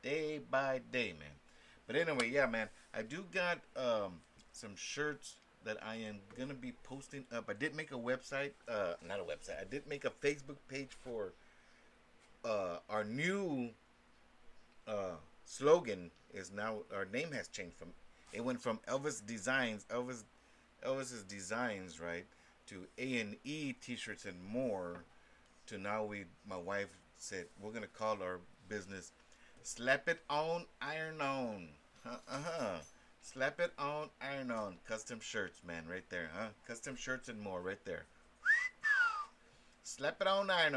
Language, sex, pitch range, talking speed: English, male, 100-140 Hz, 155 wpm